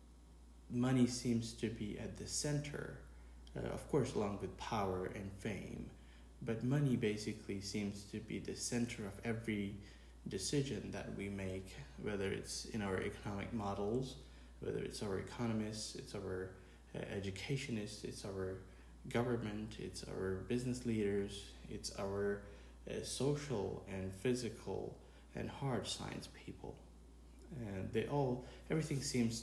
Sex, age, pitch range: male, 20-39, 95-120 Hz